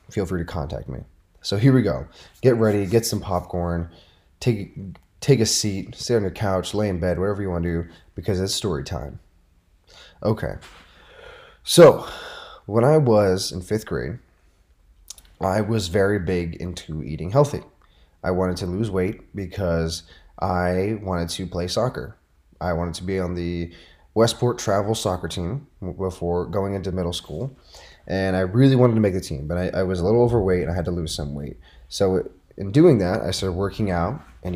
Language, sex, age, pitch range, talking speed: English, male, 20-39, 85-105 Hz, 185 wpm